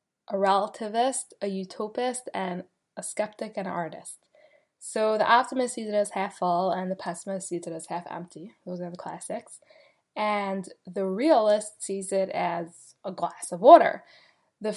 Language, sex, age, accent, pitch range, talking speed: English, female, 10-29, American, 190-240 Hz, 160 wpm